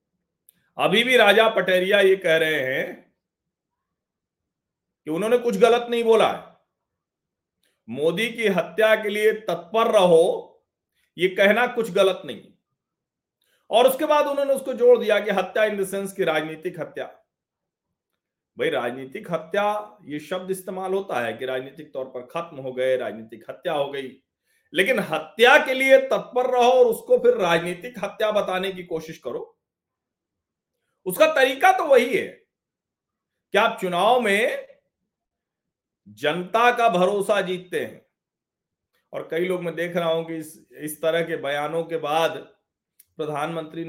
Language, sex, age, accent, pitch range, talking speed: Hindi, male, 40-59, native, 160-230 Hz, 145 wpm